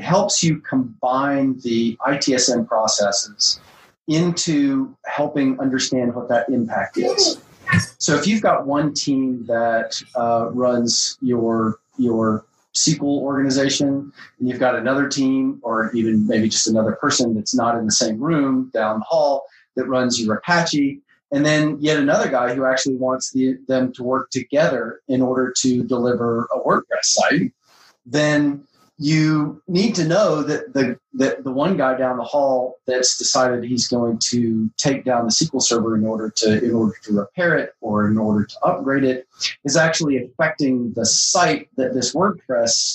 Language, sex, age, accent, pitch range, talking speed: English, male, 30-49, American, 115-145 Hz, 160 wpm